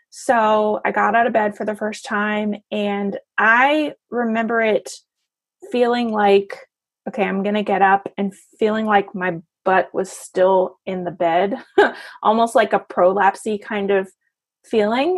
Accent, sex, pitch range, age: American, female, 185-220 Hz, 20-39